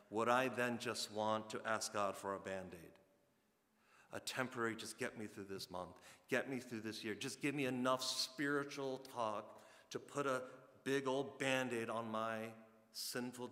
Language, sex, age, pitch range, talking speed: English, male, 40-59, 105-125 Hz, 175 wpm